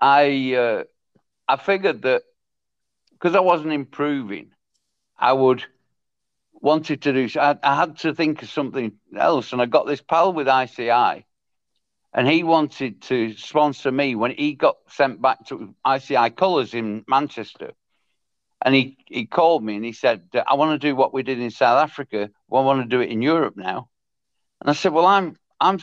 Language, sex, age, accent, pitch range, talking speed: English, male, 60-79, British, 120-155 Hz, 185 wpm